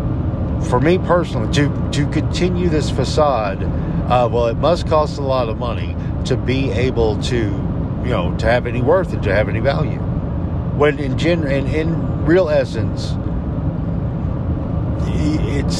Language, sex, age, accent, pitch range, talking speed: English, male, 50-69, American, 95-150 Hz, 150 wpm